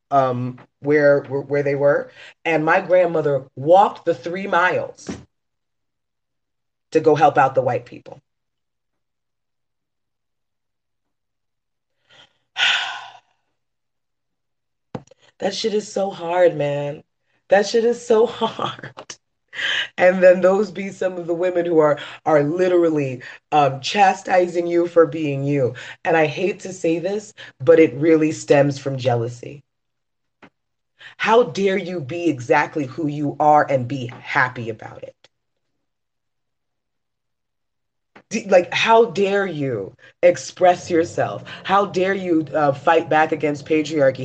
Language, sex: English, female